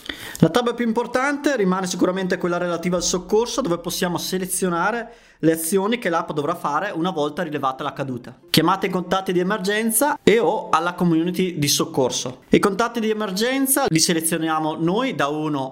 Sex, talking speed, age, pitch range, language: male, 170 wpm, 20-39, 150-200 Hz, Italian